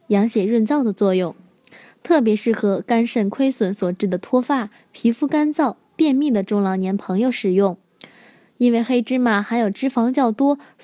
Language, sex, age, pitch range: Chinese, female, 10-29, 205-270 Hz